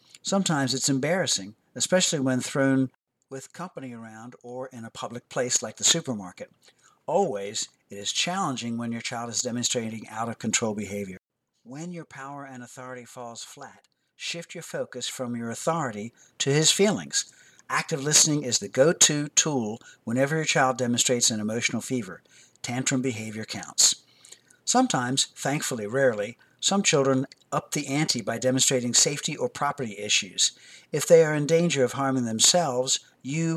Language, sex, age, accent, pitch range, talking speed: English, male, 60-79, American, 120-150 Hz, 150 wpm